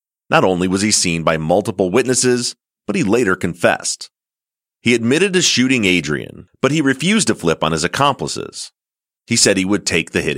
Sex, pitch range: male, 85-130 Hz